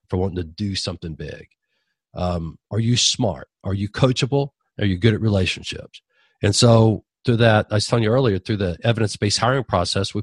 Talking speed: 195 wpm